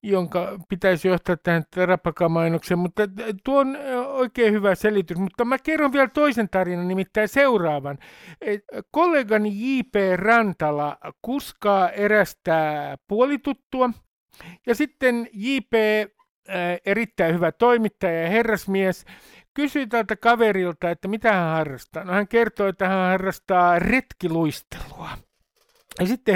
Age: 60-79